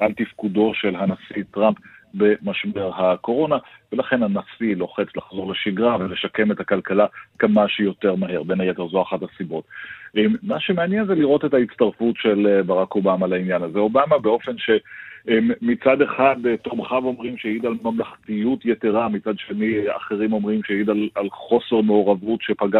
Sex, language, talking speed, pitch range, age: male, Hebrew, 140 wpm, 105-125 Hz, 40-59